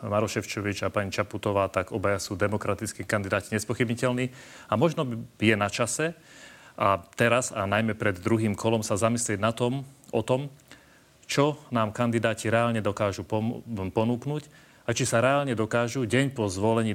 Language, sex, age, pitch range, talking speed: Slovak, male, 30-49, 105-125 Hz, 150 wpm